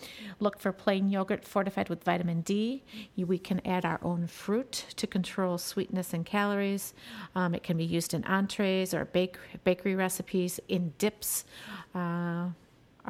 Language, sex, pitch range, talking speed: English, female, 175-205 Hz, 150 wpm